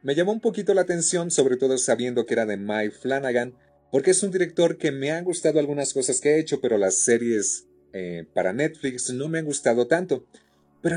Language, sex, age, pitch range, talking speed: English, male, 40-59, 130-185 Hz, 220 wpm